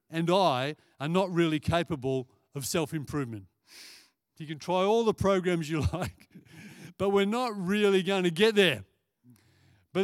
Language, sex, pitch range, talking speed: English, male, 135-190 Hz, 150 wpm